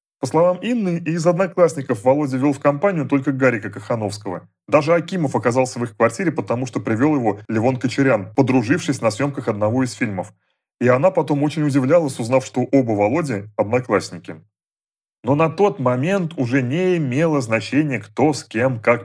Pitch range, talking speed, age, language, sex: 120-155 Hz, 165 wpm, 30-49, Russian, male